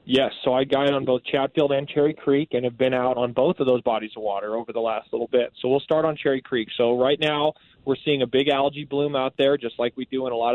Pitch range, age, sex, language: 125-150 Hz, 20-39, male, English